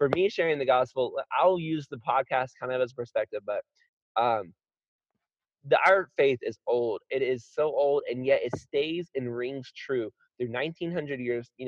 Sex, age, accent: male, 20-39, American